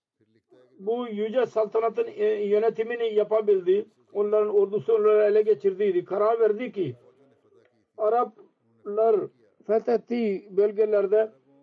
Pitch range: 195-230 Hz